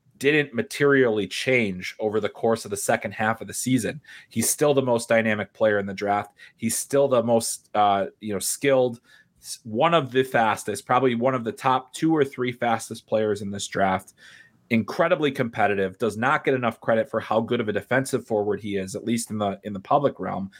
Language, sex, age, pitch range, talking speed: English, male, 30-49, 105-130 Hz, 205 wpm